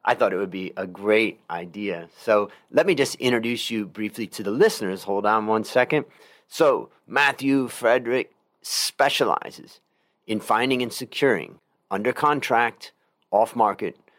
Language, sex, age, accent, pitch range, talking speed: English, male, 30-49, American, 105-130 Hz, 145 wpm